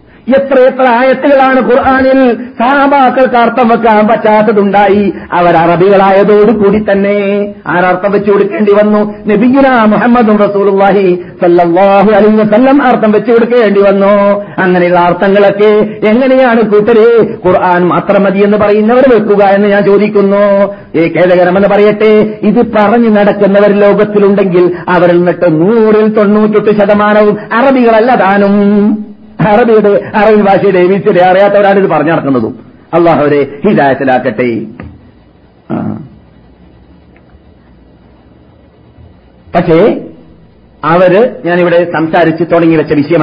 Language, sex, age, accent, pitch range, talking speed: Malayalam, male, 50-69, native, 175-225 Hz, 80 wpm